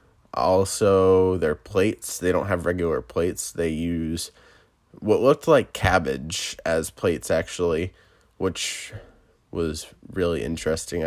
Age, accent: 20-39, American